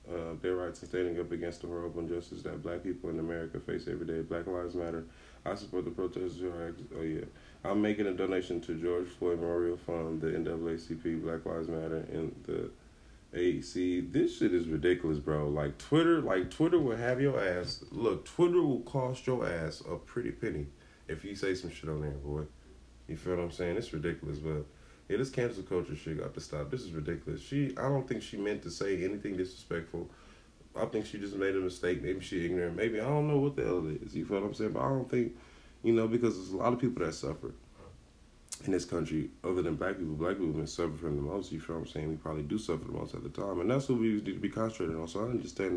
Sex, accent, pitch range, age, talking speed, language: male, American, 80-105 Hz, 20-39, 235 wpm, English